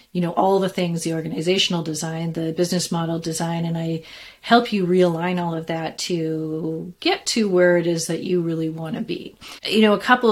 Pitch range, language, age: 165-195 Hz, English, 30-49